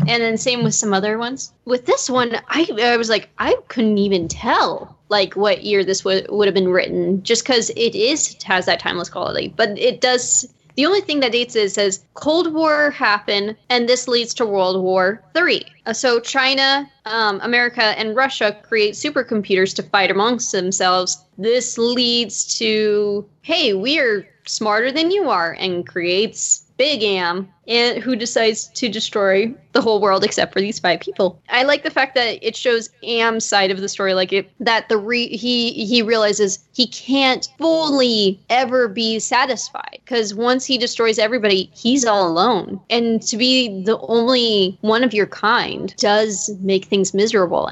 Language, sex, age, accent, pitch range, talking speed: English, female, 10-29, American, 195-245 Hz, 180 wpm